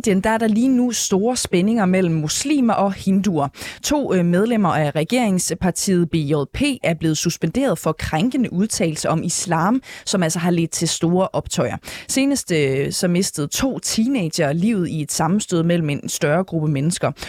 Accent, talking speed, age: native, 160 wpm, 20-39